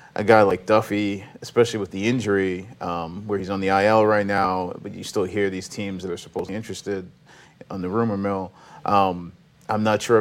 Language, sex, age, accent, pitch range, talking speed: English, male, 30-49, American, 95-110 Hz, 200 wpm